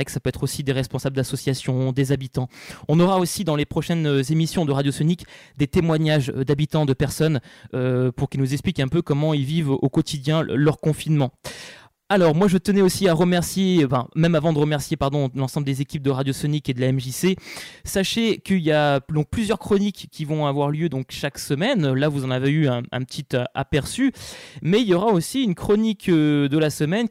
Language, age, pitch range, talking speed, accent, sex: French, 20-39, 140-185 Hz, 210 wpm, French, male